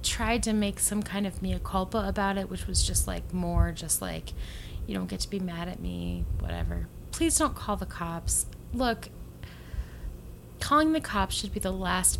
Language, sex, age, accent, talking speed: English, female, 20-39, American, 190 wpm